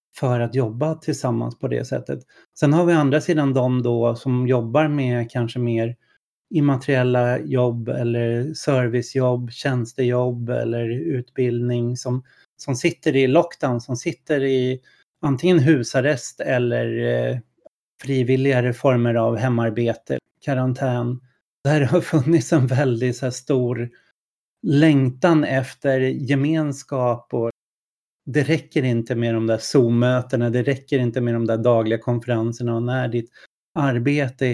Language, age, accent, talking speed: Swedish, 30-49, native, 125 wpm